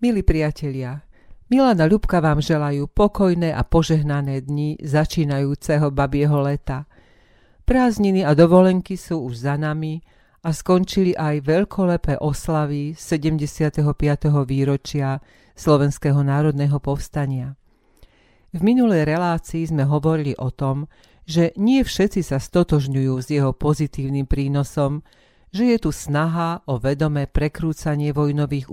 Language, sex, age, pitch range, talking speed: Slovak, female, 40-59, 140-165 Hz, 115 wpm